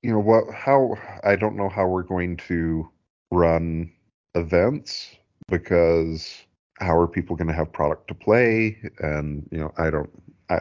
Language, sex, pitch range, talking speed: English, male, 80-100 Hz, 165 wpm